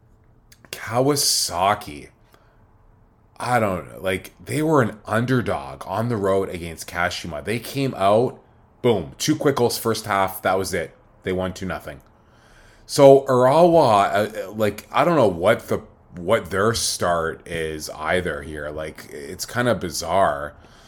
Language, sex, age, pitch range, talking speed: English, male, 20-39, 95-115 Hz, 140 wpm